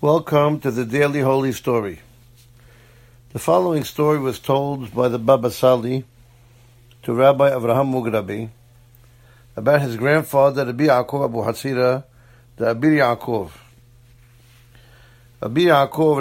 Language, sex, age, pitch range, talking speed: English, male, 60-79, 120-140 Hz, 115 wpm